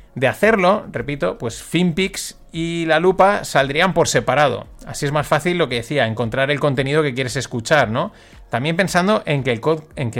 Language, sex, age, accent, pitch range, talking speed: Spanish, male, 30-49, Spanish, 130-165 Hz, 190 wpm